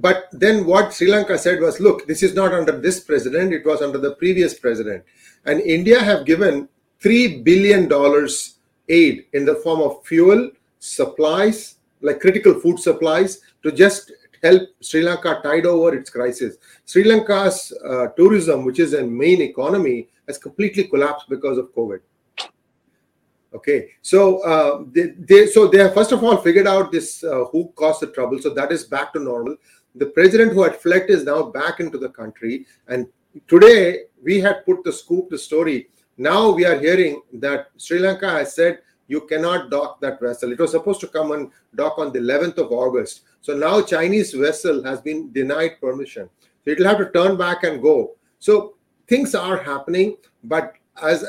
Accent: Indian